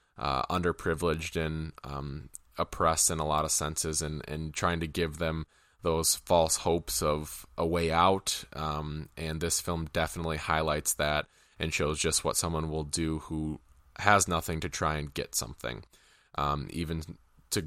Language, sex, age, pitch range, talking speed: English, male, 20-39, 75-80 Hz, 165 wpm